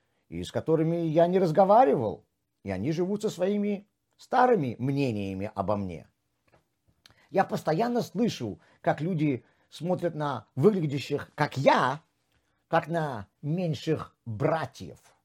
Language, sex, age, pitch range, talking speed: Russian, male, 50-69, 120-180 Hz, 115 wpm